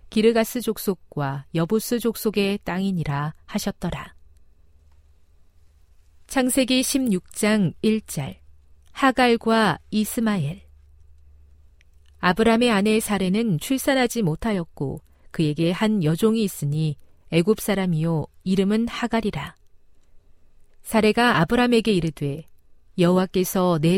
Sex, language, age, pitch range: female, Korean, 40-59, 150-215 Hz